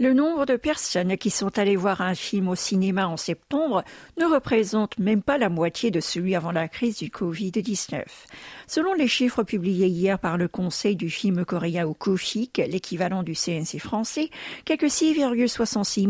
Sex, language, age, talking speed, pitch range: female, French, 50-69, 170 wpm, 180-245 Hz